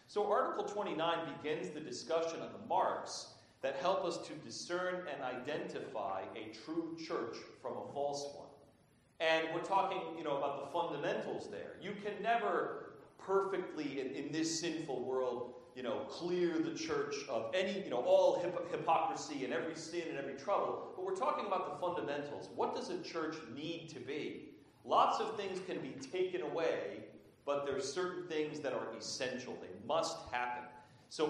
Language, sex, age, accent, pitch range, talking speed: English, male, 40-59, American, 135-180 Hz, 175 wpm